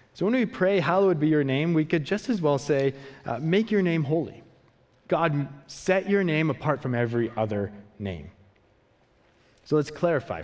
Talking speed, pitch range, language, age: 180 wpm, 105-150 Hz, English, 30-49